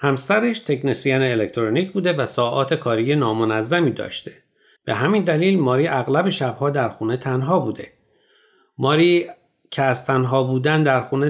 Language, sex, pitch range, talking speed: Persian, male, 115-150 Hz, 140 wpm